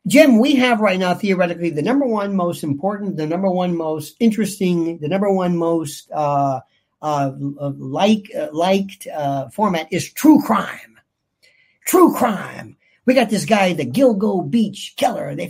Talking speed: 165 wpm